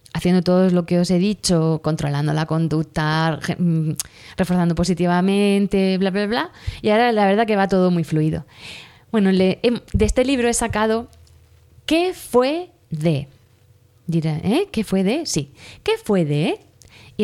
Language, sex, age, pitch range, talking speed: Spanish, female, 20-39, 155-220 Hz, 155 wpm